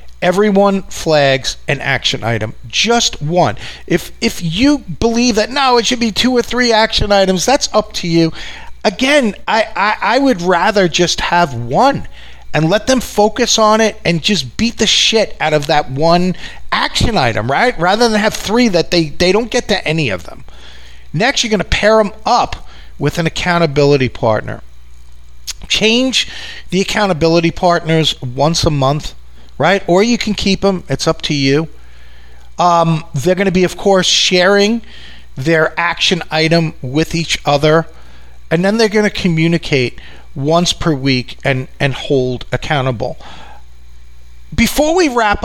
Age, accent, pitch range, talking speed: 40-59, American, 150-215 Hz, 160 wpm